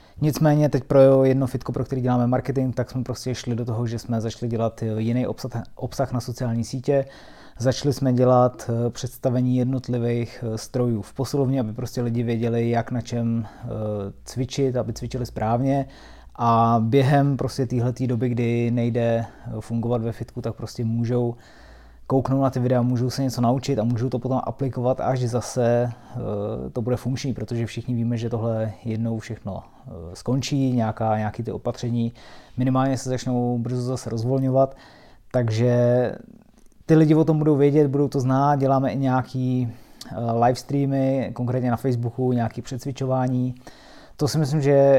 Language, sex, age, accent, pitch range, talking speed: Czech, male, 20-39, native, 115-130 Hz, 155 wpm